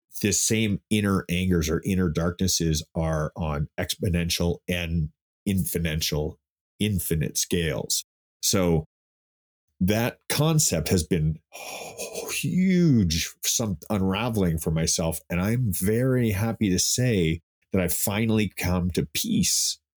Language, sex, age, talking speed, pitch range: English, male, 30-49, 105 wpm, 80-105 Hz